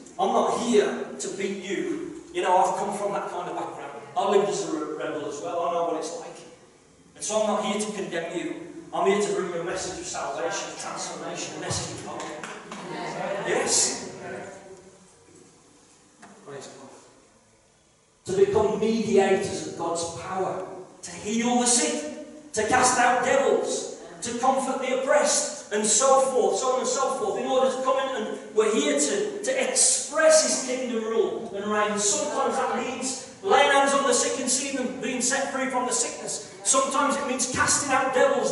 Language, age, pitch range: English, 40-59, 215-285 Hz